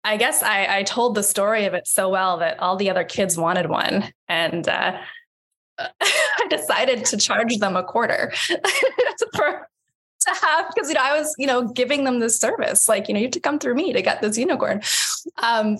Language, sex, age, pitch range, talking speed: English, female, 10-29, 185-250 Hz, 210 wpm